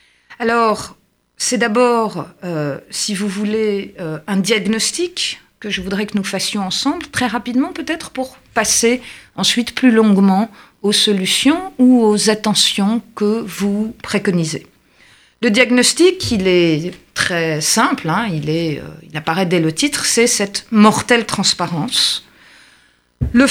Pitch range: 190-240 Hz